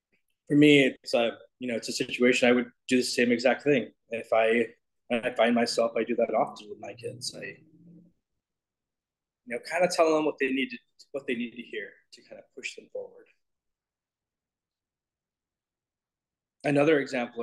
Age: 20-39